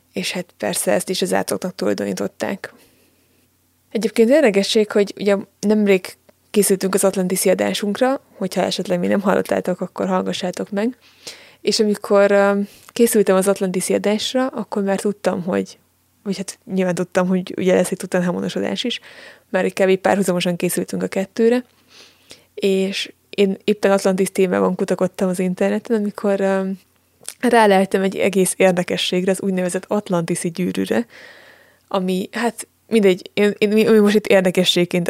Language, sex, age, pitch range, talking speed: Hungarian, female, 20-39, 180-205 Hz, 135 wpm